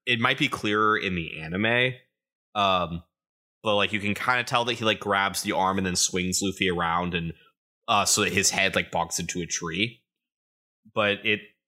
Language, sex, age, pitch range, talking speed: English, male, 20-39, 85-110 Hz, 195 wpm